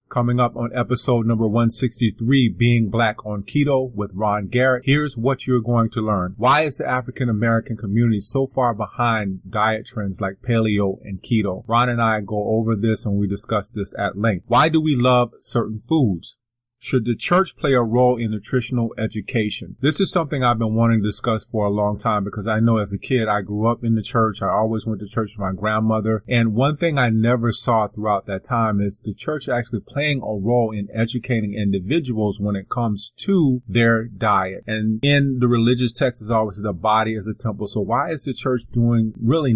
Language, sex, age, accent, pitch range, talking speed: English, male, 30-49, American, 105-125 Hz, 205 wpm